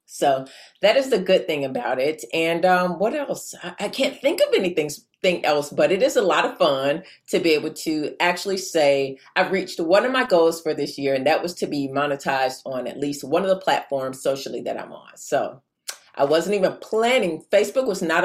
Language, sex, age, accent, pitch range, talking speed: English, female, 30-49, American, 150-220 Hz, 215 wpm